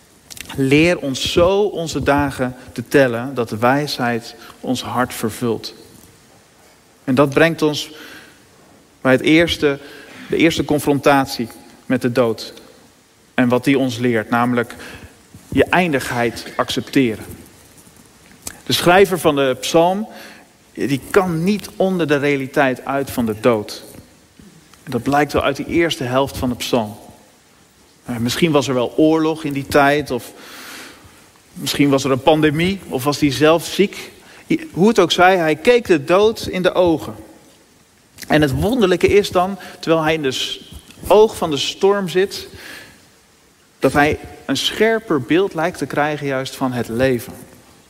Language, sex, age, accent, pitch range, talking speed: Dutch, male, 40-59, Dutch, 130-170 Hz, 145 wpm